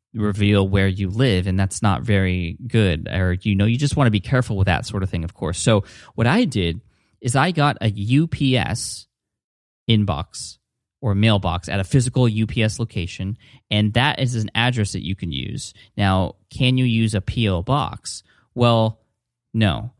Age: 20-39